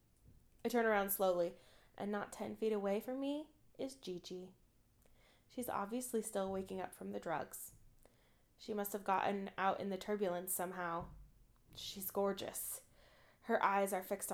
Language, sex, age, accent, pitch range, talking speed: English, female, 20-39, American, 180-210 Hz, 150 wpm